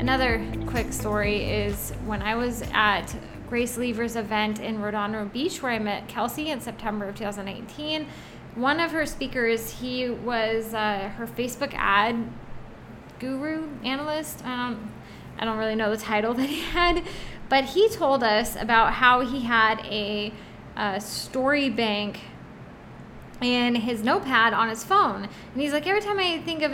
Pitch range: 215-280 Hz